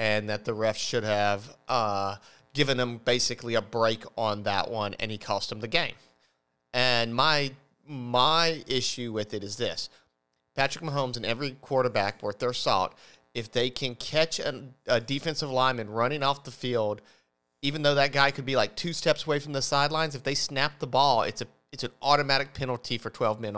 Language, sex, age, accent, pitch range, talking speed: English, male, 40-59, American, 110-140 Hz, 195 wpm